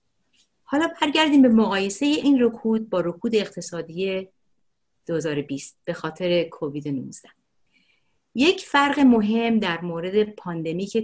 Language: Persian